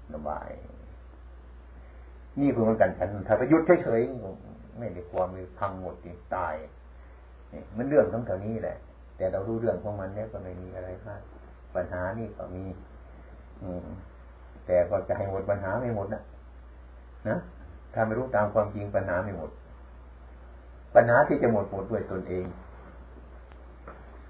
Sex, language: male, Thai